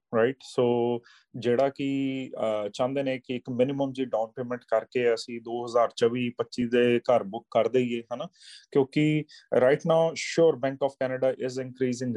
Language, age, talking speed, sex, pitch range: Punjabi, 30-49, 155 wpm, male, 120-140 Hz